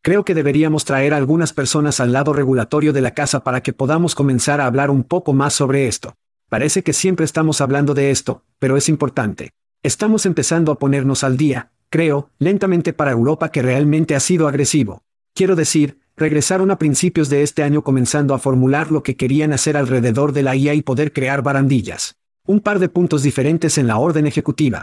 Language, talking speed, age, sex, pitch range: Spanish, 195 wpm, 50-69, male, 135-155 Hz